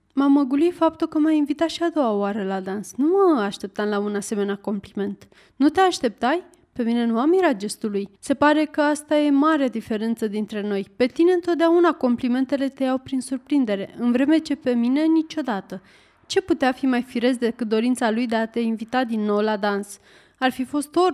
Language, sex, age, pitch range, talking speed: Romanian, female, 20-39, 225-295 Hz, 205 wpm